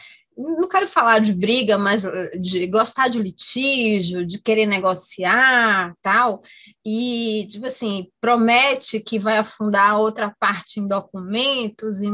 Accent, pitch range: Brazilian, 200-240 Hz